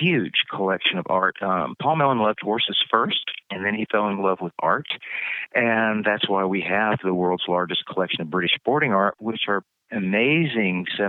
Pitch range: 90-105 Hz